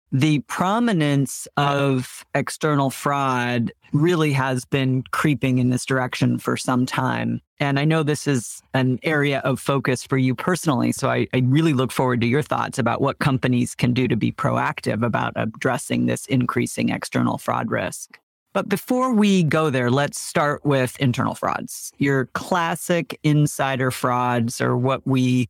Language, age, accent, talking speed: English, 40-59, American, 160 wpm